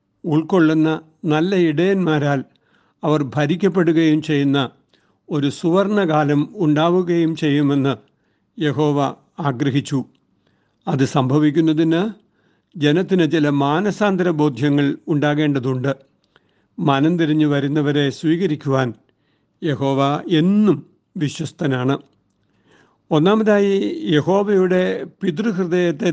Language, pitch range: Malayalam, 140-170 Hz